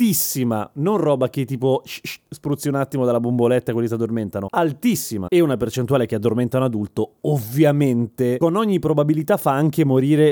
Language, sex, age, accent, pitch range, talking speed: Italian, male, 30-49, native, 125-165 Hz, 180 wpm